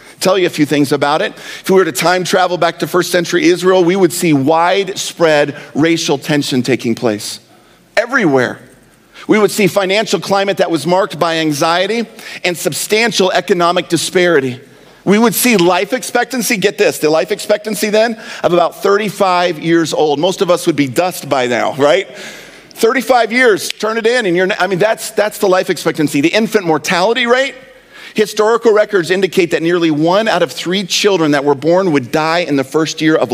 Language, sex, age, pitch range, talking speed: English, male, 40-59, 155-200 Hz, 185 wpm